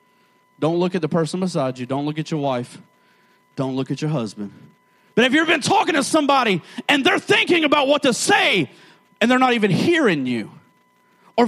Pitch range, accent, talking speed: 165-235 Hz, American, 200 wpm